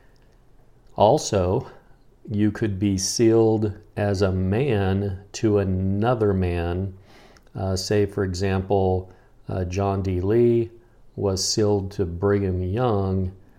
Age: 50-69